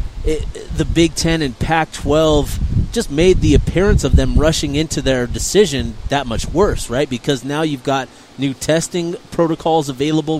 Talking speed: 160 wpm